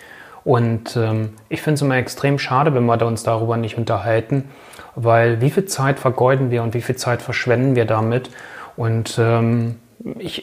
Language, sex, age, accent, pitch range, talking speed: German, male, 30-49, German, 120-145 Hz, 175 wpm